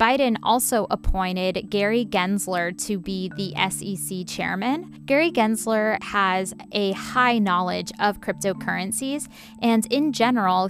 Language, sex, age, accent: English, female, 10-29, American